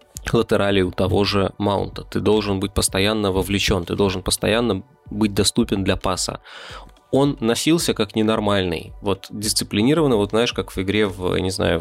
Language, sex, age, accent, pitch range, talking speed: Russian, male, 20-39, native, 95-115 Hz, 160 wpm